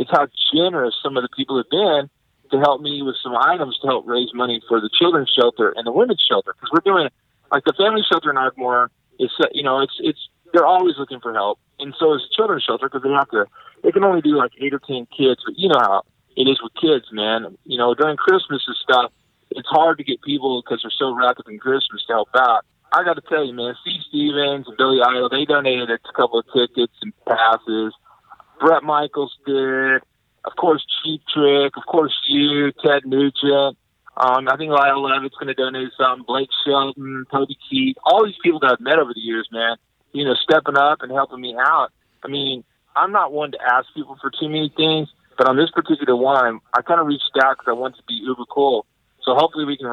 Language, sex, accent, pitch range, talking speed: English, male, American, 125-150 Hz, 230 wpm